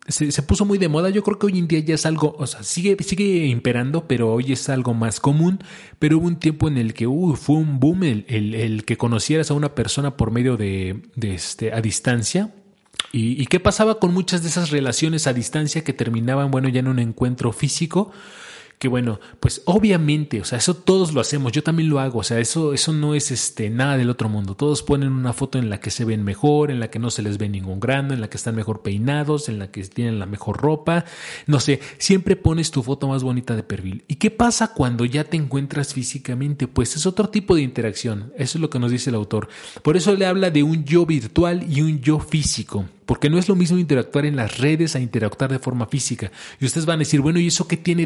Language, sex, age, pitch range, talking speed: Spanish, male, 30-49, 120-155 Hz, 245 wpm